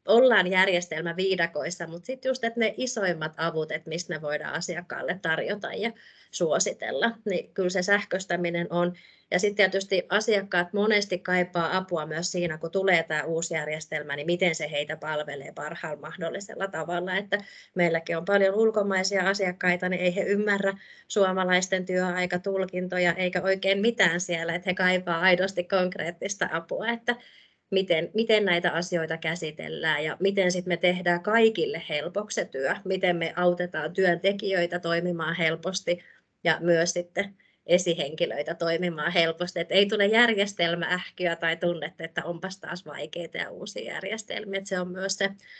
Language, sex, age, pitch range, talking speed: Finnish, female, 30-49, 170-200 Hz, 145 wpm